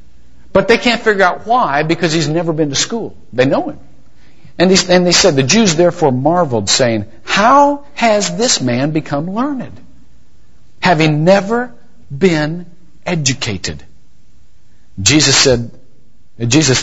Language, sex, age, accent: English, male, 50-69, American